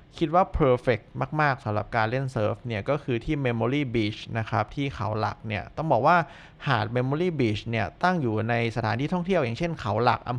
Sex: male